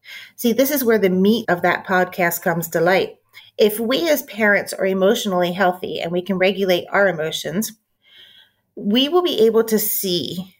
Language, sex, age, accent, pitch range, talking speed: English, female, 30-49, American, 180-225 Hz, 175 wpm